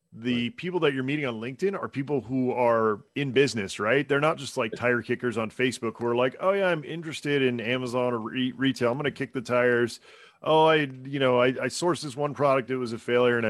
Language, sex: English, male